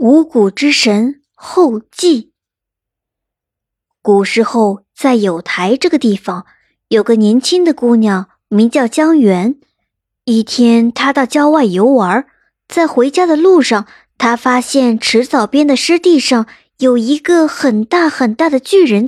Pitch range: 220-300 Hz